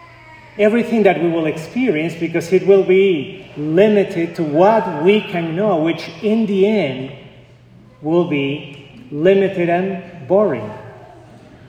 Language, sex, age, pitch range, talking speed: English, male, 30-49, 140-190 Hz, 125 wpm